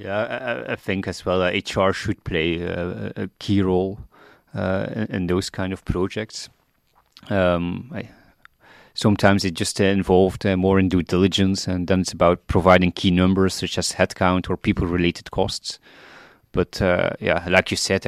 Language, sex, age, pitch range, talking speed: English, male, 30-49, 90-95 Hz, 165 wpm